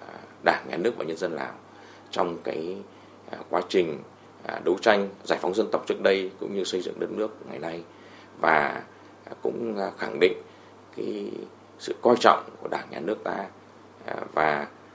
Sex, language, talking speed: male, Vietnamese, 165 wpm